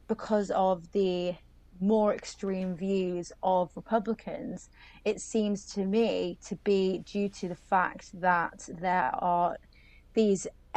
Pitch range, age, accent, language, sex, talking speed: 180-205 Hz, 20-39, British, English, female, 125 wpm